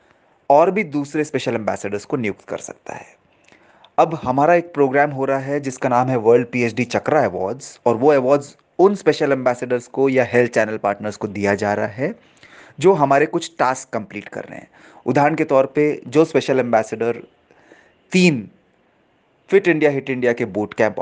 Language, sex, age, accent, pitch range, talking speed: Hindi, male, 30-49, native, 110-140 Hz, 180 wpm